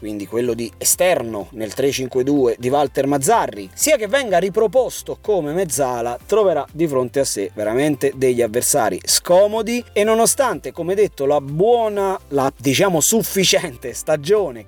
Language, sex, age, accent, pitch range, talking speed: Italian, male, 30-49, native, 135-220 Hz, 140 wpm